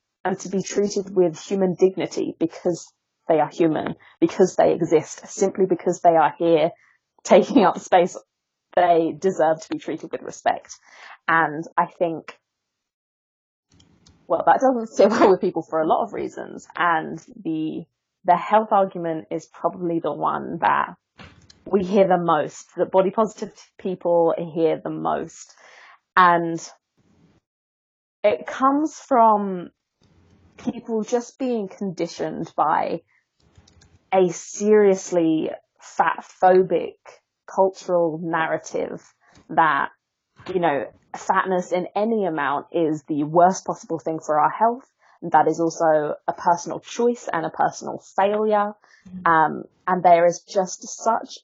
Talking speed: 130 wpm